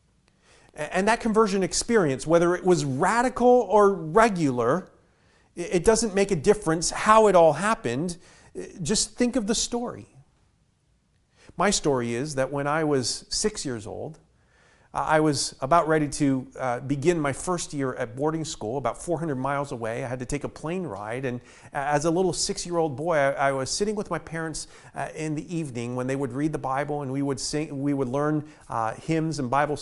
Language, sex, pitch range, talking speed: English, male, 130-165 Hz, 175 wpm